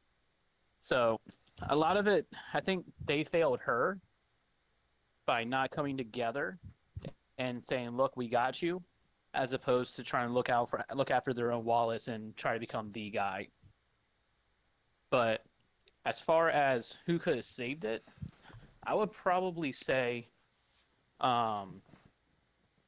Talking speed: 140 wpm